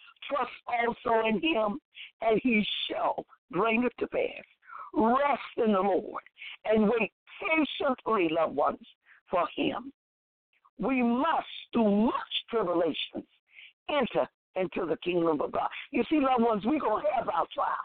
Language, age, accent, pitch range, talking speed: English, 50-69, American, 205-290 Hz, 145 wpm